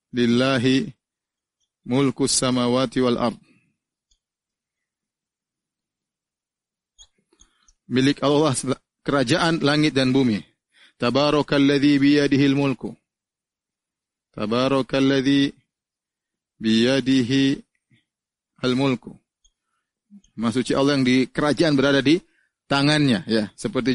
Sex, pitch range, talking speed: male, 130-150 Hz, 70 wpm